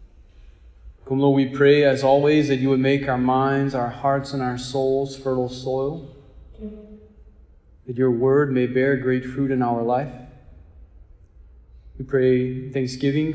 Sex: male